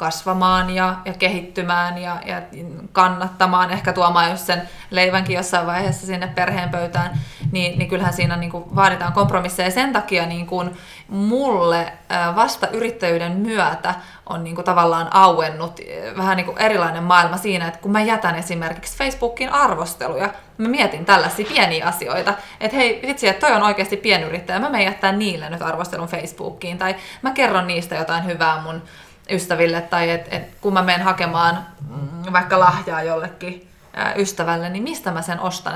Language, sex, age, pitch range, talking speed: Finnish, female, 20-39, 170-195 Hz, 165 wpm